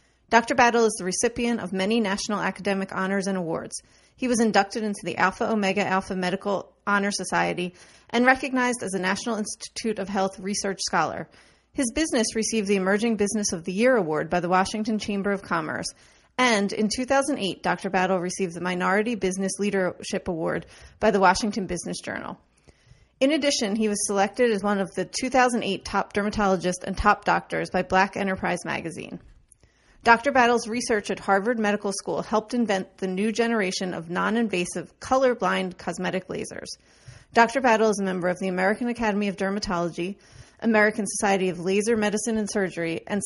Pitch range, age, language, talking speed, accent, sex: 190-225 Hz, 30-49, English, 165 wpm, American, female